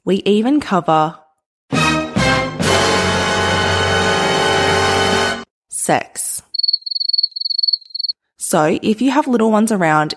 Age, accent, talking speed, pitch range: 20-39, Australian, 65 wpm, 170-230 Hz